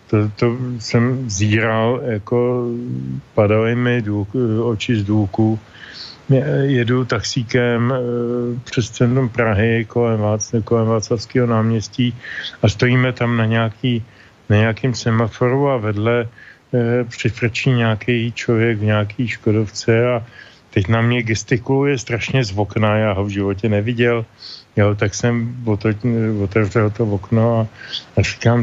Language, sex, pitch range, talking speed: Slovak, male, 110-130 Hz, 125 wpm